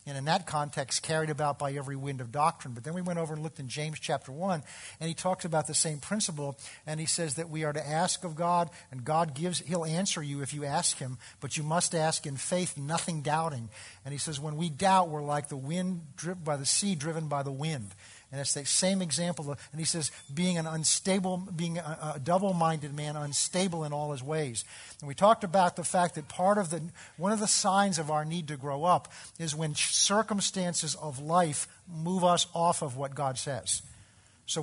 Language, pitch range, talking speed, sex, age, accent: English, 140-175 Hz, 225 wpm, male, 50-69, American